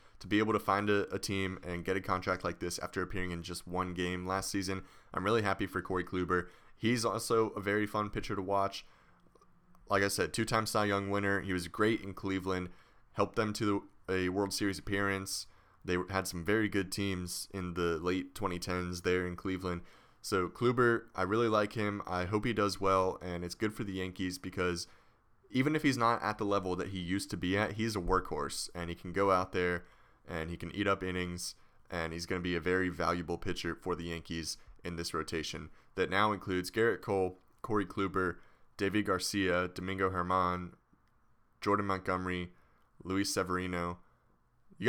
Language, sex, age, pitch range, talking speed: English, male, 20-39, 90-100 Hz, 190 wpm